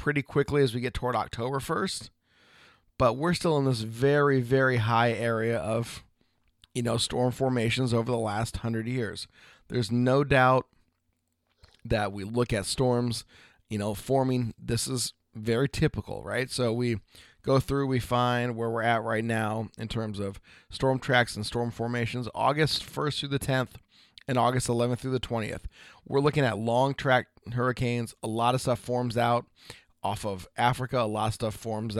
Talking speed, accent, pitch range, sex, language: 175 wpm, American, 105-125 Hz, male, English